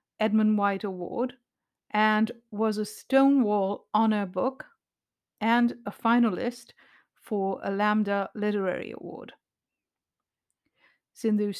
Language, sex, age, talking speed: English, female, 50-69, 95 wpm